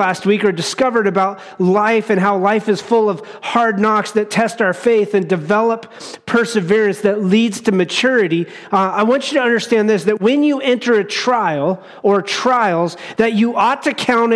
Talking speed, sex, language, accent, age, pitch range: 190 wpm, male, English, American, 40-59, 190-235 Hz